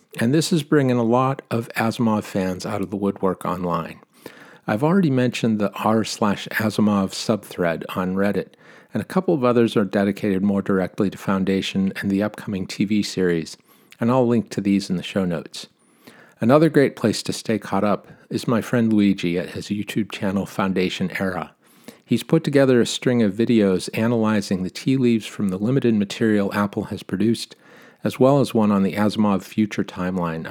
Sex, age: male, 50-69